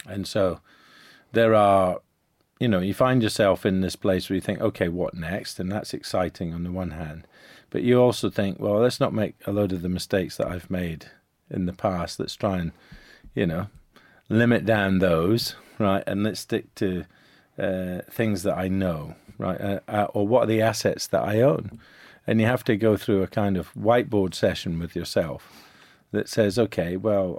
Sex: male